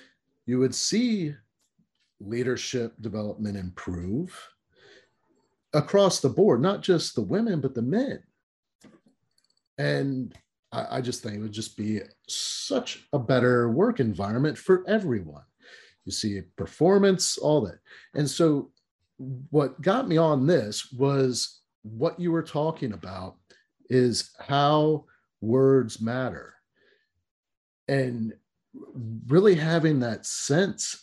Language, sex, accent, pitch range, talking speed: English, male, American, 110-150 Hz, 115 wpm